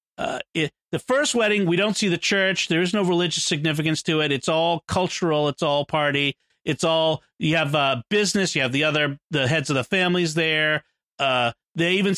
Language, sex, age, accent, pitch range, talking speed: English, male, 40-59, American, 155-205 Hz, 205 wpm